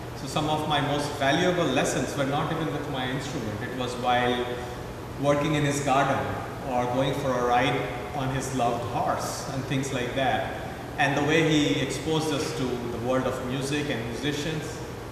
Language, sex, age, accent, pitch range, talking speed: English, male, 40-59, Indian, 135-180 Hz, 185 wpm